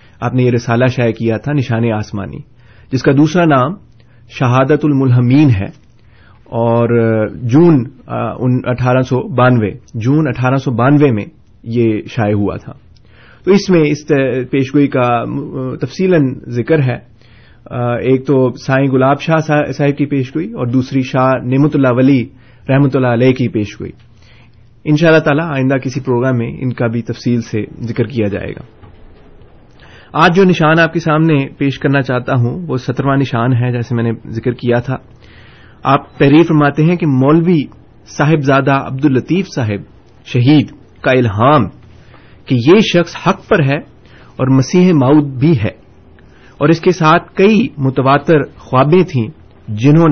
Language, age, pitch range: Urdu, 30-49, 120-145 Hz